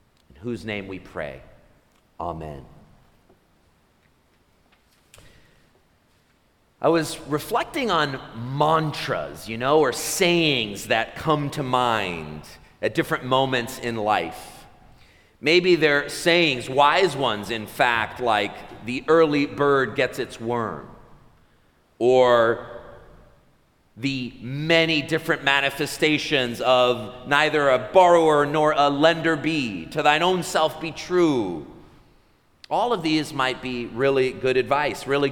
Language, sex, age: English, male, 40-59